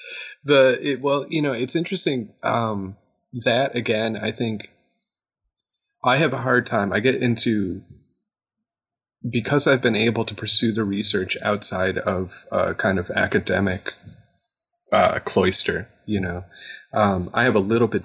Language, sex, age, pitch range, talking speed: English, male, 30-49, 100-125 Hz, 145 wpm